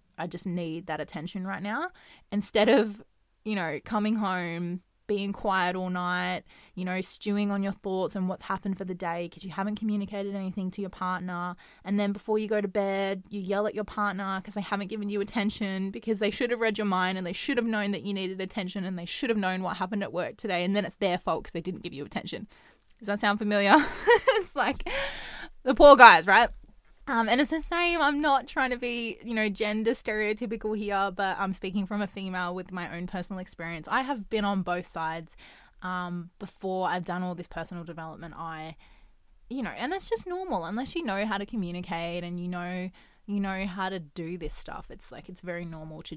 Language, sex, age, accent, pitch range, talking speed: English, female, 20-39, Australian, 180-215 Hz, 225 wpm